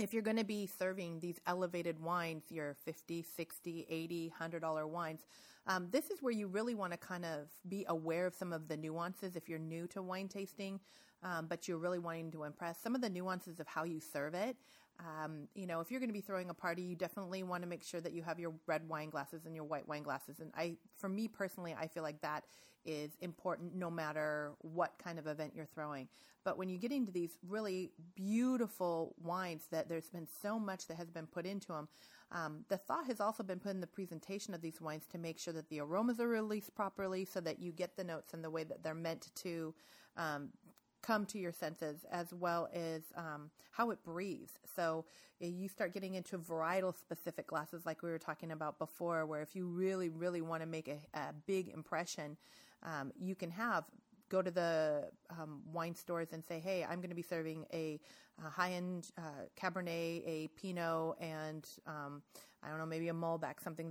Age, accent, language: 30-49, American, English